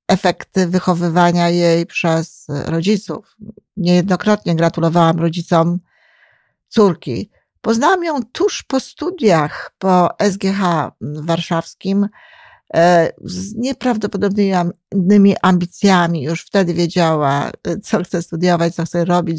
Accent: native